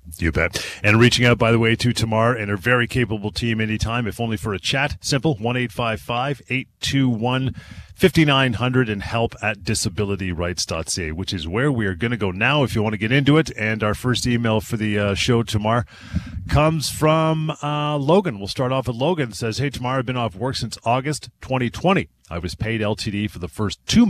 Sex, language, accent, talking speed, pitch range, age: male, English, American, 225 wpm, 100-125 Hz, 40-59